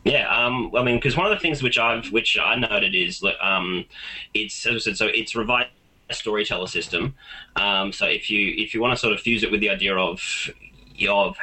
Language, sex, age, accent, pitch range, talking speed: English, male, 20-39, Australian, 100-115 Hz, 230 wpm